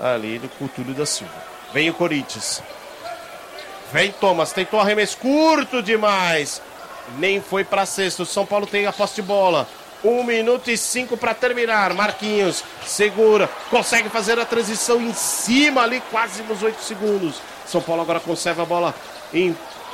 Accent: Brazilian